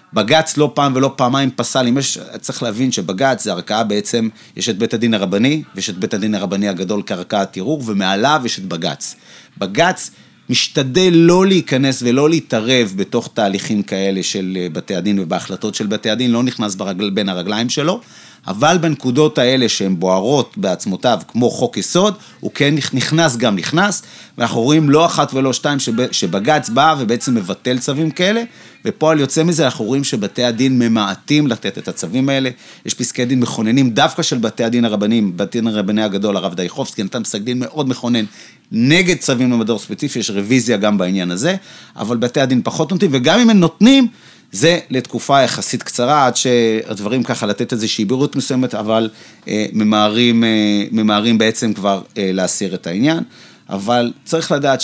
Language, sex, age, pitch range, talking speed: Hebrew, male, 30-49, 110-145 Hz, 165 wpm